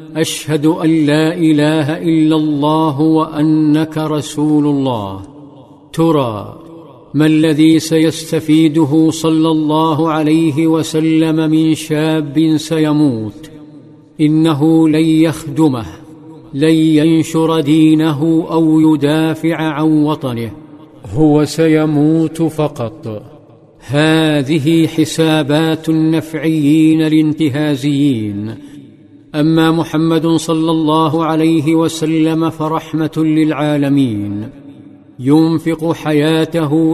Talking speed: 75 wpm